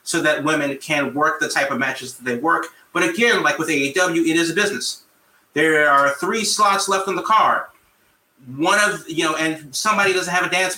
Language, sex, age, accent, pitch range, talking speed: English, male, 30-49, American, 135-165 Hz, 215 wpm